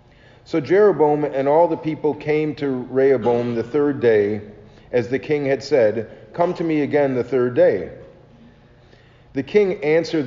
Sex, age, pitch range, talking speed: male, 40-59, 125-155 Hz, 160 wpm